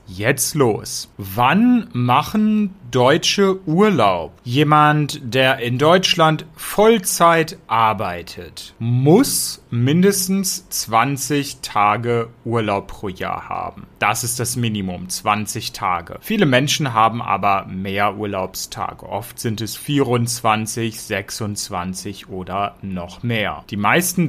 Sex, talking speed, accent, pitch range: male, 105 wpm, German, 105-155 Hz